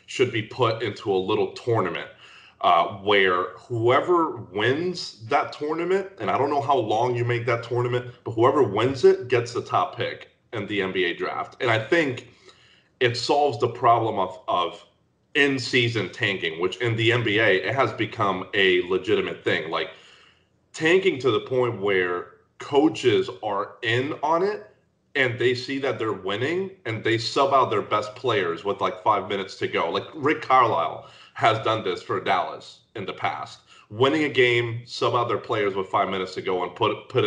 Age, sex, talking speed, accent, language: 30-49, male, 180 wpm, American, English